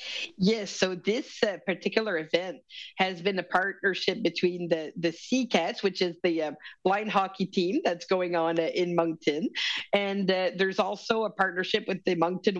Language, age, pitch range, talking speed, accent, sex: English, 40-59, 175-200 Hz, 175 wpm, American, female